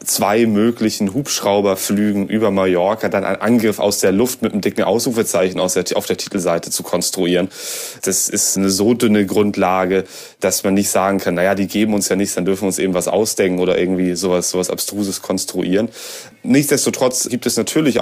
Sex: male